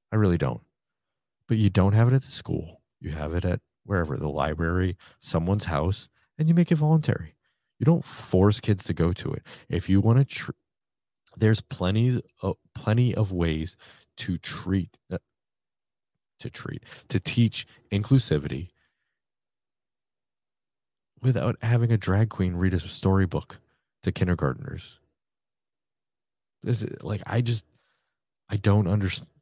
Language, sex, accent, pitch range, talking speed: English, male, American, 85-115 Hz, 140 wpm